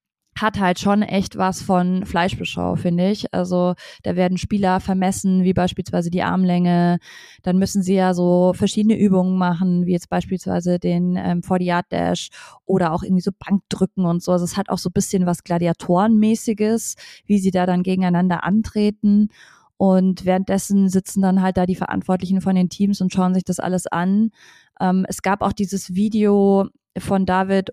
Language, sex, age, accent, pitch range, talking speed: German, female, 20-39, German, 185-205 Hz, 170 wpm